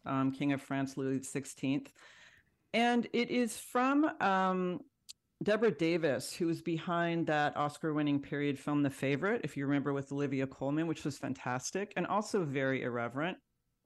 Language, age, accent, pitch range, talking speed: English, 40-59, American, 145-180 Hz, 155 wpm